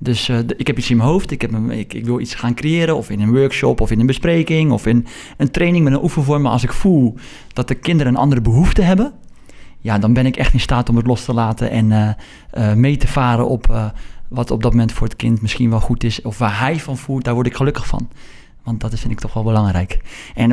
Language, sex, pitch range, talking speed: Dutch, male, 120-150 Hz, 270 wpm